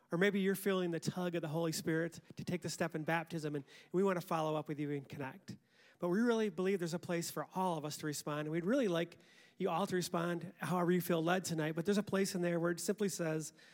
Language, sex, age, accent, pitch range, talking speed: English, male, 40-59, American, 160-185 Hz, 270 wpm